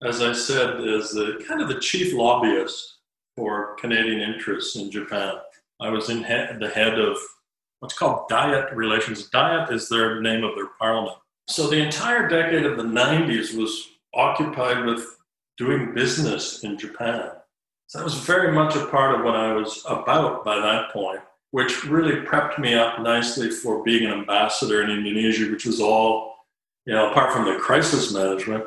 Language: English